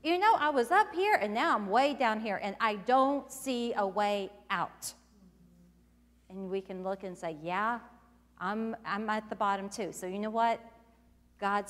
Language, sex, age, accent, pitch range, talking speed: English, female, 40-59, American, 180-235 Hz, 190 wpm